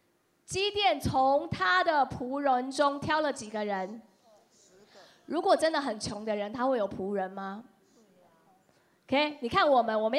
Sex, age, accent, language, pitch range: female, 20-39, American, Chinese, 230-325 Hz